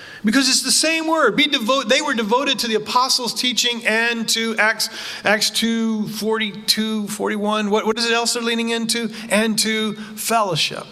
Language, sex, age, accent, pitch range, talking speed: English, male, 40-59, American, 180-235 Hz, 165 wpm